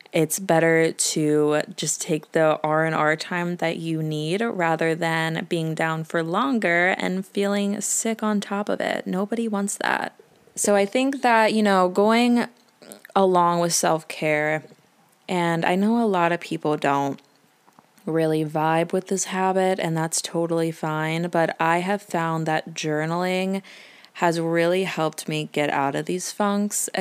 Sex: female